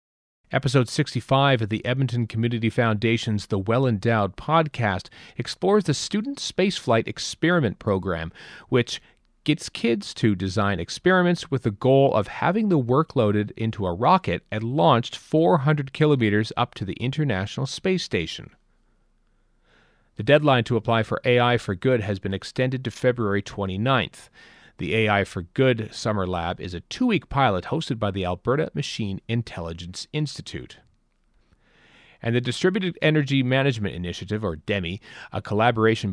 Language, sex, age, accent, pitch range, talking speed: English, male, 40-59, American, 105-140 Hz, 140 wpm